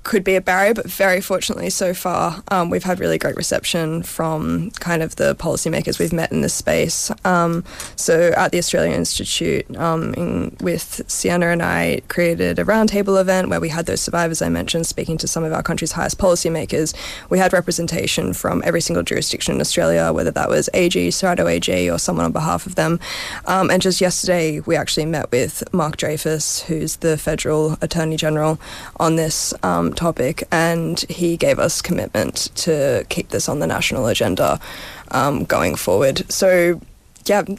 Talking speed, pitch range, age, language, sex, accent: 180 wpm, 160-190 Hz, 20-39, English, female, Australian